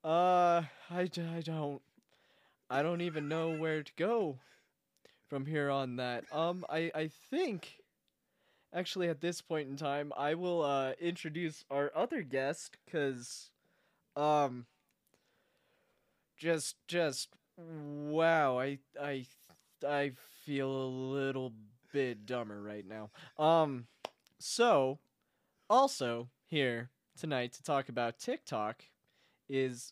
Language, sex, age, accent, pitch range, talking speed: English, male, 20-39, American, 130-180 Hz, 115 wpm